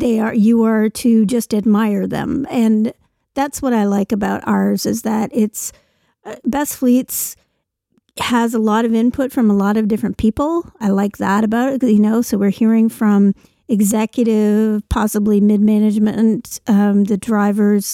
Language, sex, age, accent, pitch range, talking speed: English, female, 50-69, American, 210-245 Hz, 165 wpm